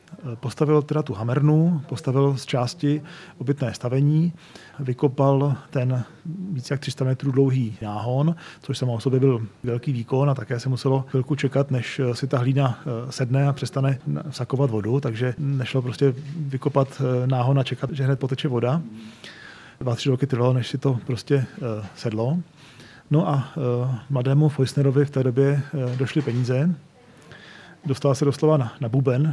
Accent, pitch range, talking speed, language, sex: native, 125-145 Hz, 145 wpm, Czech, male